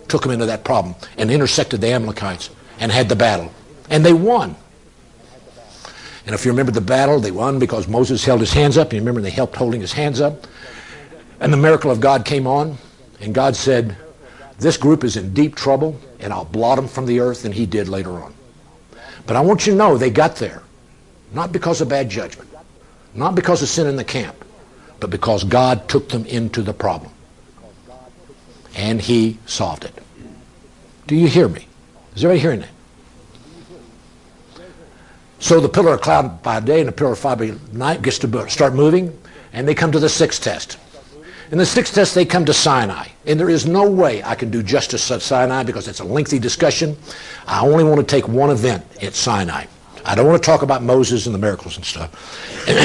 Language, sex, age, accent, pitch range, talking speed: English, male, 60-79, American, 115-155 Hz, 200 wpm